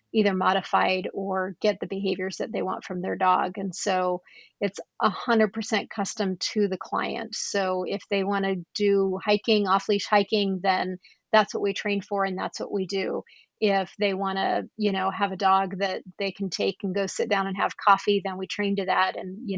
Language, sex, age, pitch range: English, female, 40-59, 190-210 Hz